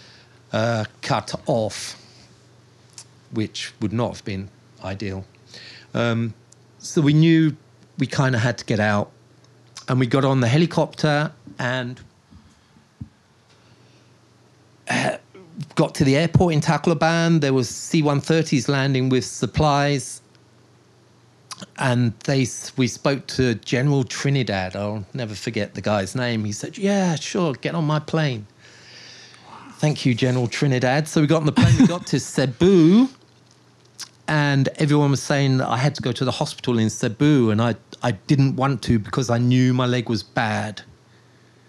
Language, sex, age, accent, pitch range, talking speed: English, male, 40-59, British, 115-145 Hz, 145 wpm